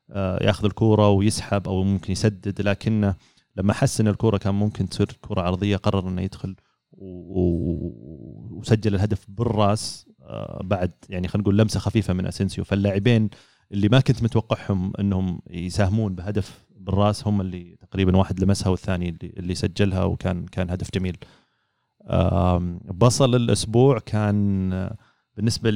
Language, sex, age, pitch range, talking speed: Arabic, male, 30-49, 95-110 Hz, 135 wpm